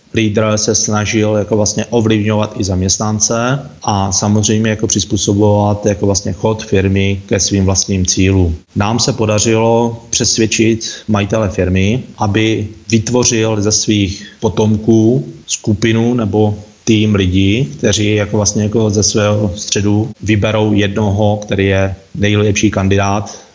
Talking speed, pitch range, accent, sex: 120 wpm, 100-110 Hz, native, male